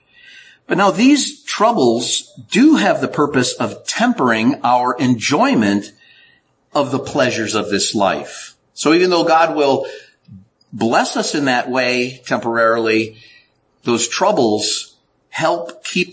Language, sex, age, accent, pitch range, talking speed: English, male, 50-69, American, 120-165 Hz, 125 wpm